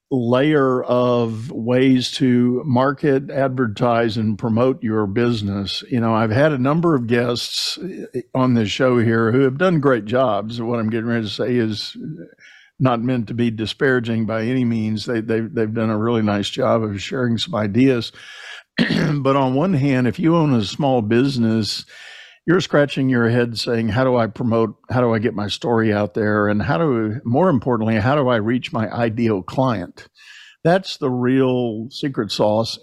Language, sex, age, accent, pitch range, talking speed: English, male, 50-69, American, 110-130 Hz, 180 wpm